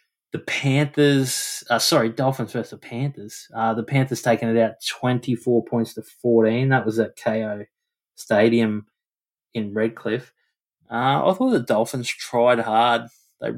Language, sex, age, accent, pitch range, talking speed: English, male, 20-39, Australian, 110-125 Hz, 145 wpm